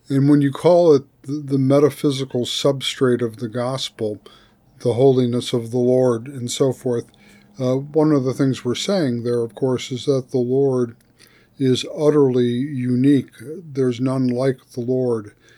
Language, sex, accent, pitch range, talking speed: English, male, American, 125-140 Hz, 160 wpm